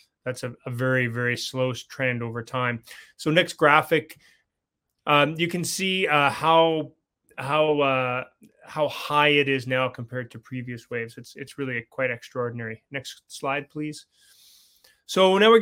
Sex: male